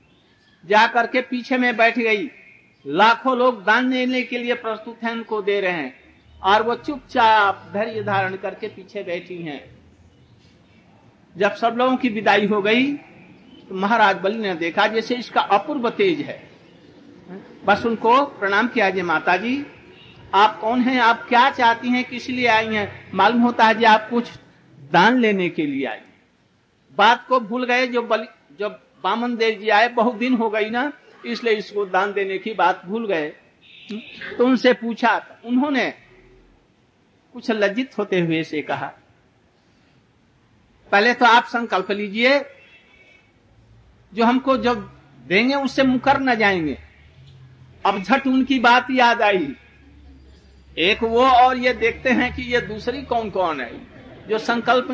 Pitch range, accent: 200-245 Hz, native